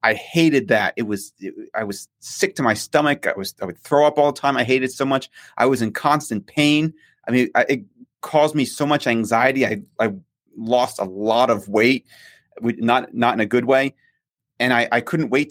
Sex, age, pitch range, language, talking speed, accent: male, 30-49, 115-140 Hz, English, 215 wpm, American